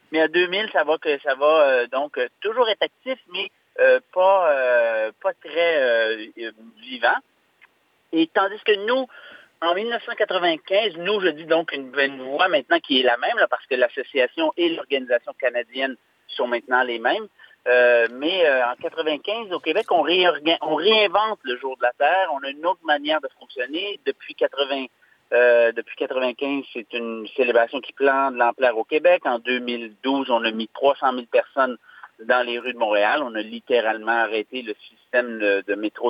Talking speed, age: 180 wpm, 40-59